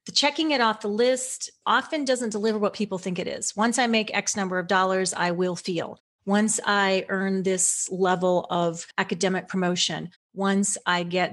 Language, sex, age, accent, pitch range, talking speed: English, female, 30-49, American, 180-220 Hz, 185 wpm